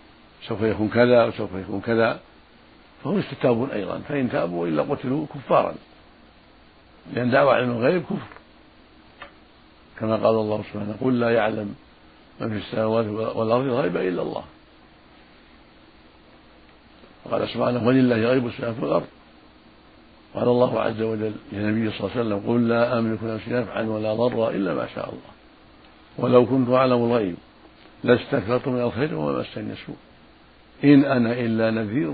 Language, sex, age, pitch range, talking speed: Arabic, male, 60-79, 110-125 Hz, 135 wpm